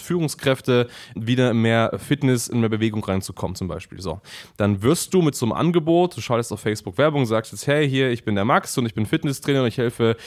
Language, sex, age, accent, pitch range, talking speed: German, male, 20-39, German, 115-145 Hz, 215 wpm